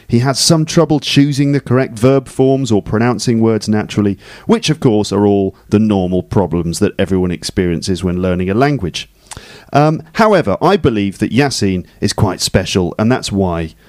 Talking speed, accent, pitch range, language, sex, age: 175 wpm, British, 105-155 Hz, English, male, 40-59